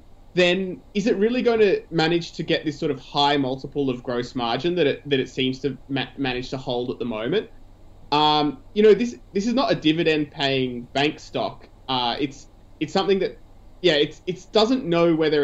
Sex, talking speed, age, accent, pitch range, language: male, 205 wpm, 20-39, Australian, 130-170 Hz, English